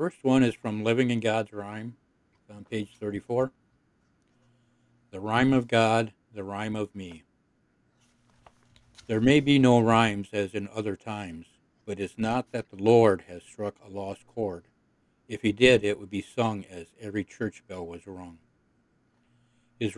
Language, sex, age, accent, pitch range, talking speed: English, male, 60-79, American, 100-120 Hz, 160 wpm